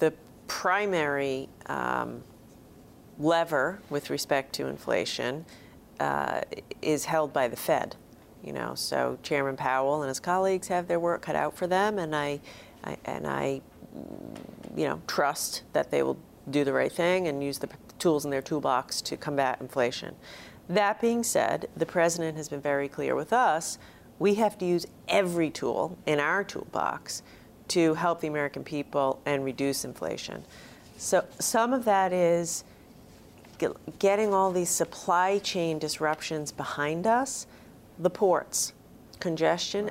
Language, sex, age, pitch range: English, female, 40-59, 145-185 Hz